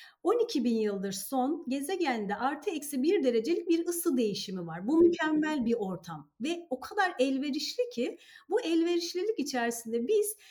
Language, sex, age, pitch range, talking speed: Turkish, female, 40-59, 225-330 Hz, 150 wpm